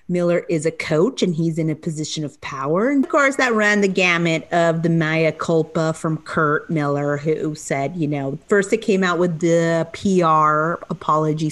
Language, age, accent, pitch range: English, 30-49, American, 150-175 Hz